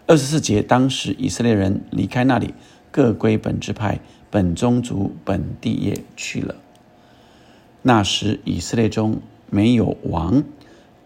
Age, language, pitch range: 50-69, Chinese, 105-125 Hz